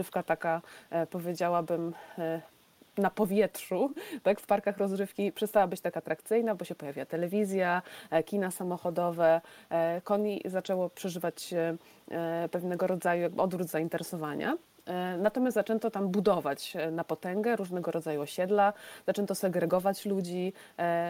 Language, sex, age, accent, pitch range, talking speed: Polish, female, 20-39, native, 175-205 Hz, 110 wpm